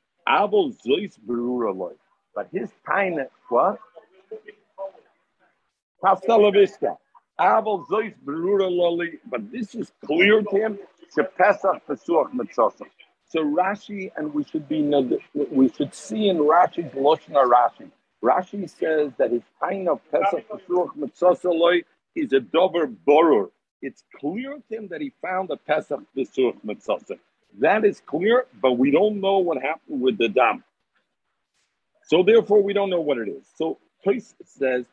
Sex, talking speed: male, 130 wpm